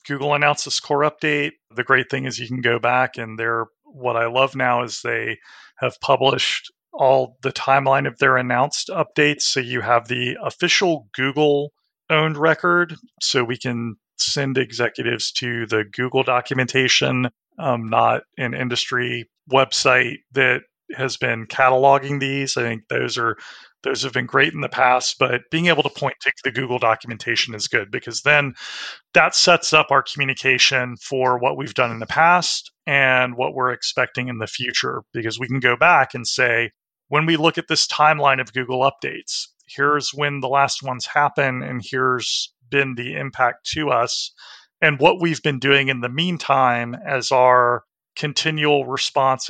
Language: English